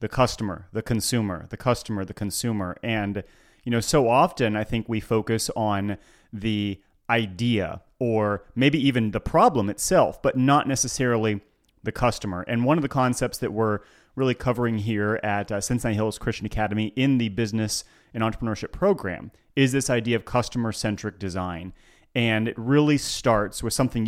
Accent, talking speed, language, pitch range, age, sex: American, 160 wpm, English, 105-125 Hz, 30-49, male